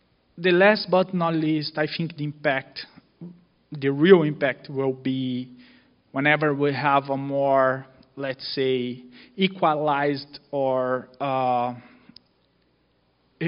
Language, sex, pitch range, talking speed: English, male, 135-170 Hz, 105 wpm